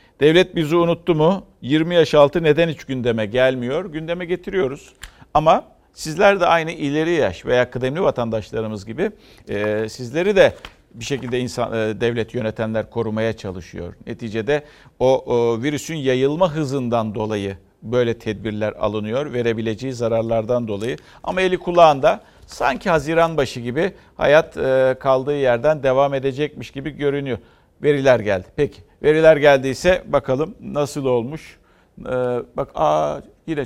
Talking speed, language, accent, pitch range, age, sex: 125 wpm, Turkish, native, 120-160 Hz, 50-69, male